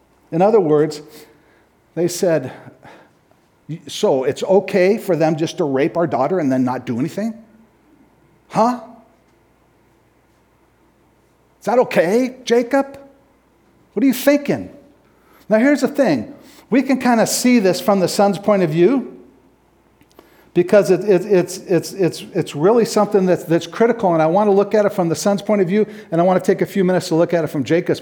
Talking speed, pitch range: 180 wpm, 145-205 Hz